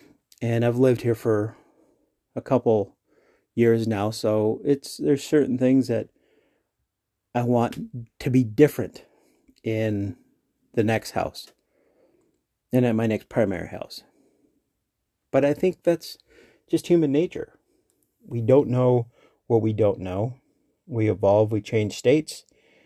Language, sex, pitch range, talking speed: English, male, 105-135 Hz, 130 wpm